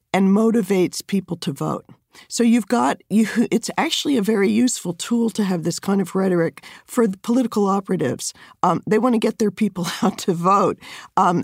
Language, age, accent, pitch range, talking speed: English, 50-69, American, 185-225 Hz, 190 wpm